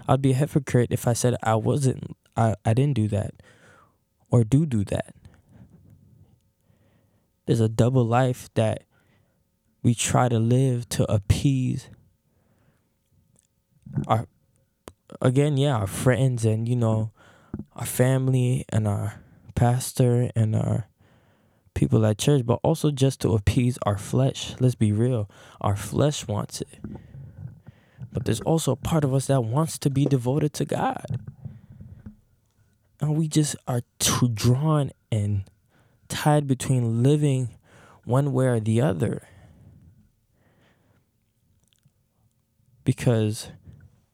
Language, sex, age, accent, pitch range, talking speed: English, male, 20-39, American, 110-130 Hz, 125 wpm